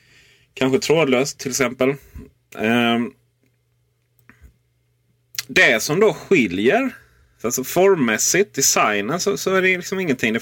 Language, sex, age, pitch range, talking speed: Swedish, male, 30-49, 95-135 Hz, 110 wpm